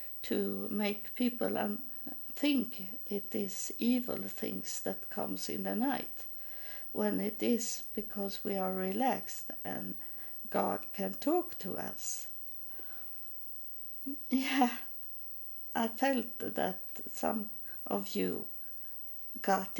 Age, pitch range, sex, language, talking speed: 50-69, 195-250 Hz, female, English, 105 wpm